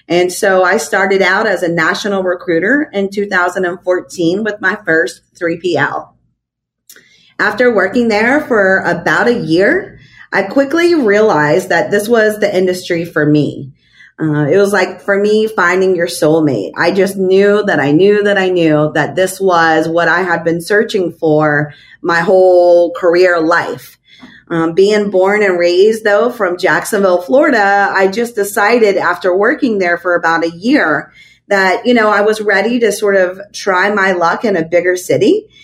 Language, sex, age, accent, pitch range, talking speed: English, female, 30-49, American, 175-210 Hz, 165 wpm